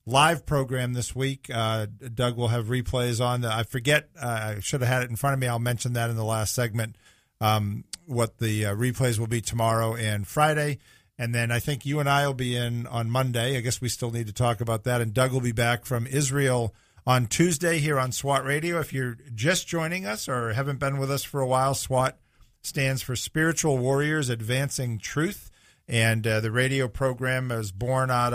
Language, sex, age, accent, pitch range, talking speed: English, male, 50-69, American, 115-135 Hz, 215 wpm